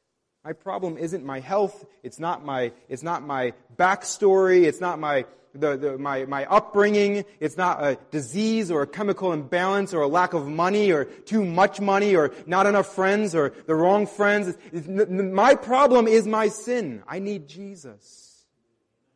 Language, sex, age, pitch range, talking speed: English, male, 30-49, 125-180 Hz, 175 wpm